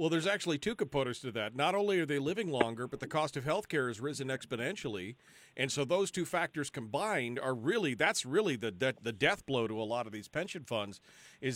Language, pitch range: English, 125-155 Hz